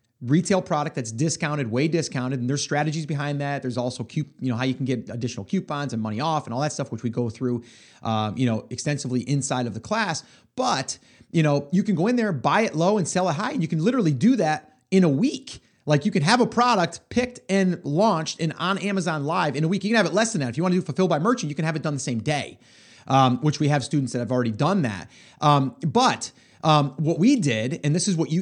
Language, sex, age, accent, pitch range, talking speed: English, male, 30-49, American, 130-190 Hz, 265 wpm